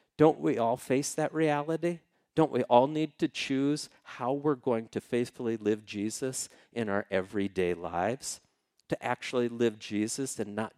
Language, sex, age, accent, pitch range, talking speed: English, male, 50-69, American, 105-140 Hz, 160 wpm